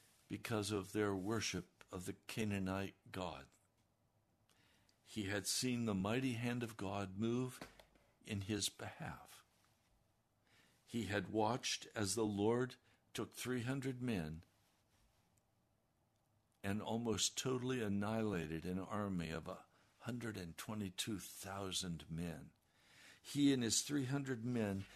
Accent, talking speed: American, 105 wpm